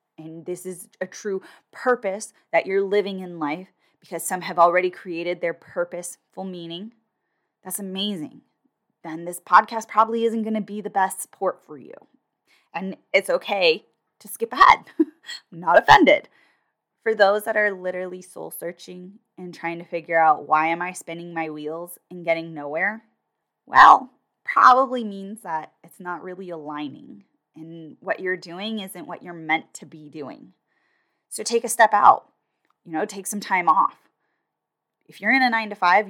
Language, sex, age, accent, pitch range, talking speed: English, female, 10-29, American, 170-215 Hz, 165 wpm